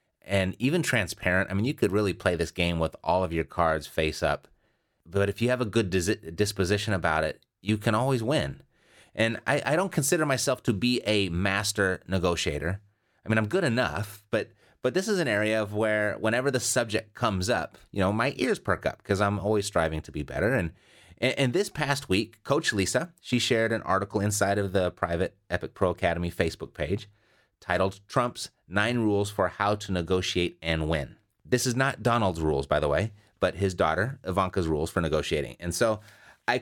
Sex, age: male, 30-49